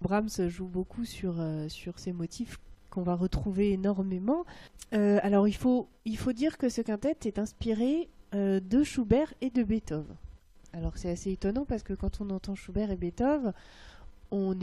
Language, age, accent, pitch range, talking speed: French, 30-49, French, 185-240 Hz, 170 wpm